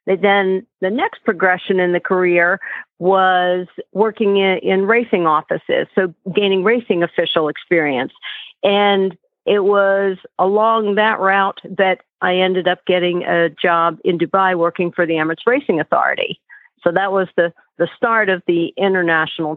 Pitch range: 175-205 Hz